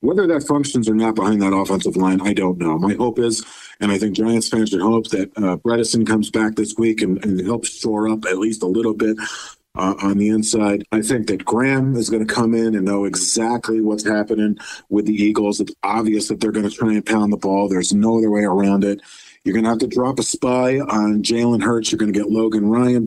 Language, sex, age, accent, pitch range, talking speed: English, male, 50-69, American, 105-120 Hz, 245 wpm